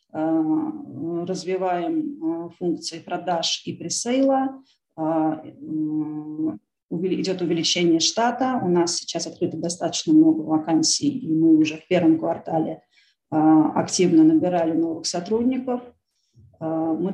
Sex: female